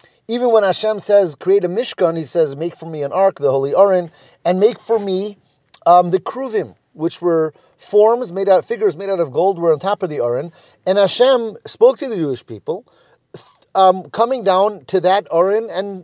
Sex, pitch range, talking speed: male, 150-215 Hz, 200 wpm